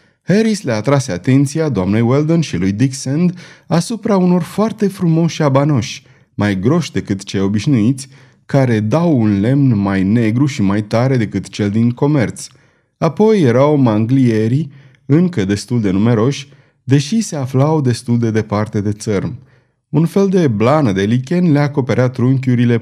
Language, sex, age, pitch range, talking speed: Romanian, male, 30-49, 110-155 Hz, 145 wpm